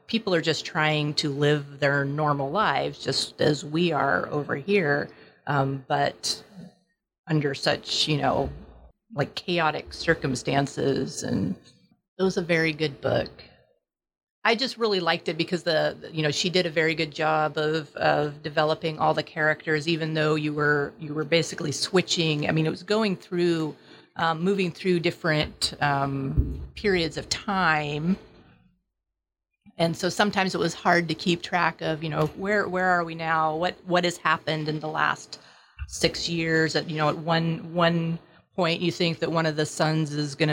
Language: English